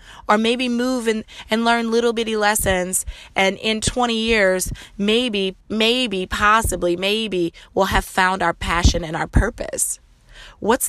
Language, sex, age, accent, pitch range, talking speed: English, female, 20-39, American, 170-220 Hz, 140 wpm